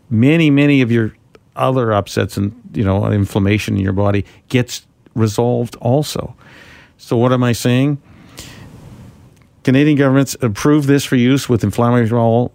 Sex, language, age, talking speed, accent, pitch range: male, English, 50-69, 140 wpm, American, 110-135 Hz